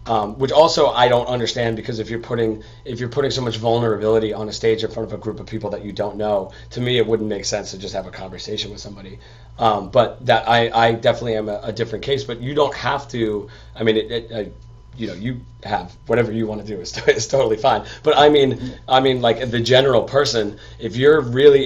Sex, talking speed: male, 240 wpm